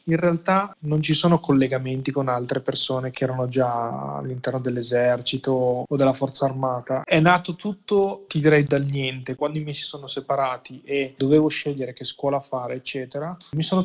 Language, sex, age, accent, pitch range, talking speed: Italian, male, 20-39, native, 130-155 Hz, 180 wpm